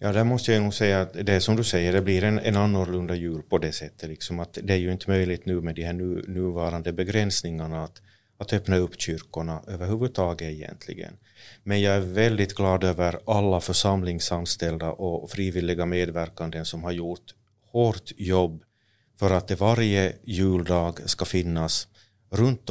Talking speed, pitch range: 170 wpm, 85-100 Hz